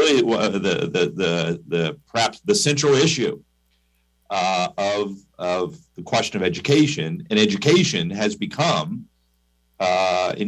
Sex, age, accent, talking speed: male, 40-59, American, 125 wpm